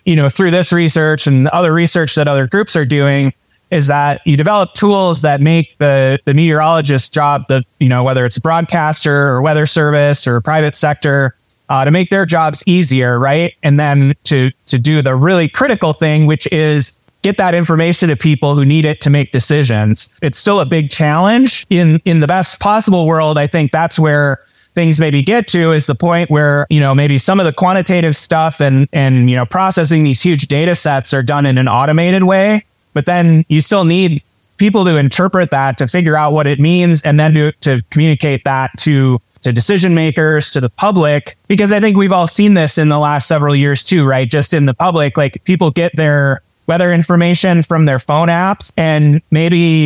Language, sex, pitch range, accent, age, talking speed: English, male, 140-170 Hz, American, 20-39, 205 wpm